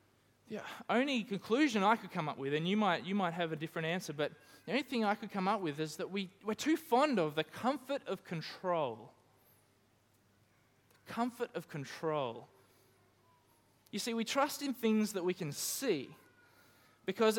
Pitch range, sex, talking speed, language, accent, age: 130-195 Hz, male, 175 wpm, English, Australian, 20-39